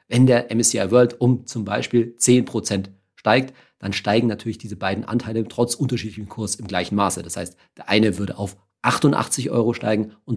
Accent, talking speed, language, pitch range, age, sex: German, 180 wpm, German, 100-135 Hz, 40-59, male